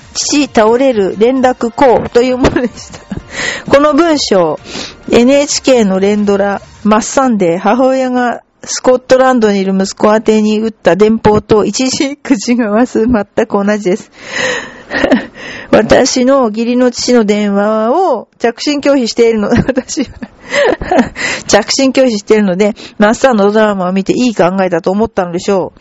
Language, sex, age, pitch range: Japanese, female, 40-59, 210-270 Hz